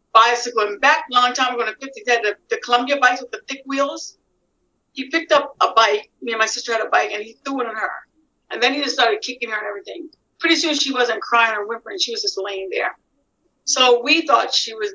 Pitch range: 225-285 Hz